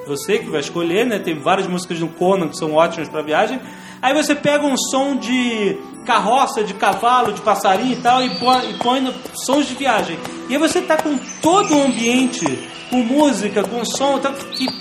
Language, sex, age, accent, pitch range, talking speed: Portuguese, male, 40-59, Brazilian, 200-265 Hz, 190 wpm